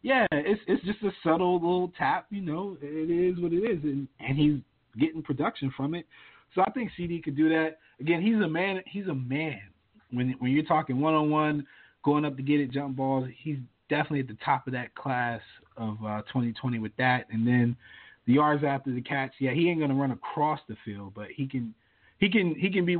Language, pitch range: English, 125-160 Hz